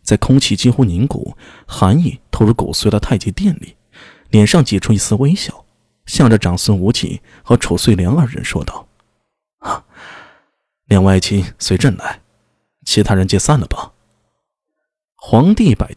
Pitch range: 100-145 Hz